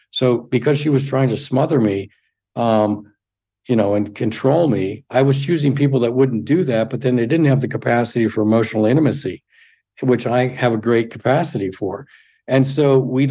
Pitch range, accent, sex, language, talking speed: 110-140 Hz, American, male, English, 190 wpm